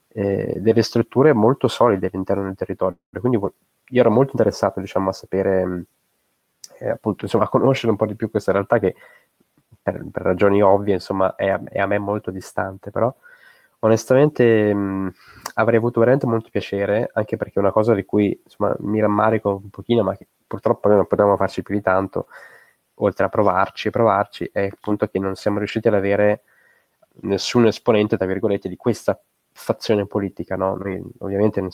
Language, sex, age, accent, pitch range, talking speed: Italian, male, 20-39, native, 95-110 Hz, 180 wpm